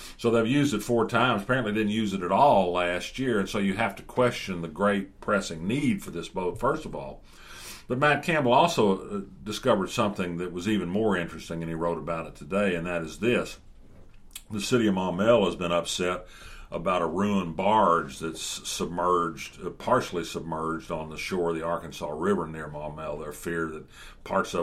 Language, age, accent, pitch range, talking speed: English, 50-69, American, 80-100 Hz, 190 wpm